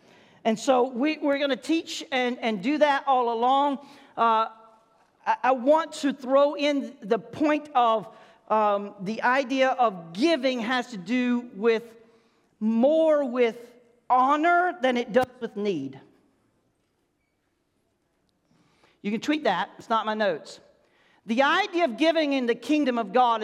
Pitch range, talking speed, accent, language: 215-280 Hz, 145 wpm, American, English